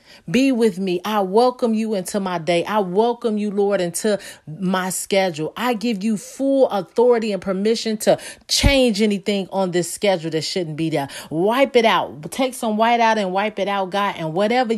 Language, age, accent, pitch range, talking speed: English, 40-59, American, 165-210 Hz, 190 wpm